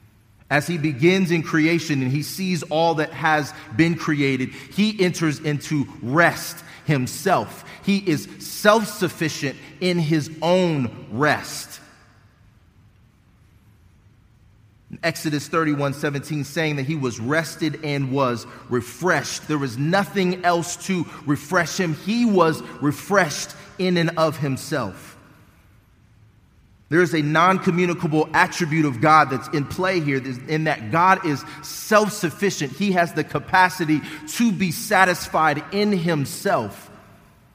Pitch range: 135-180 Hz